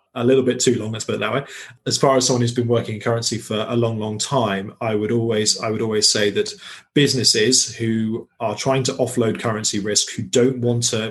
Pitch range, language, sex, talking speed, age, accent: 105-125 Hz, English, male, 240 wpm, 20-39, British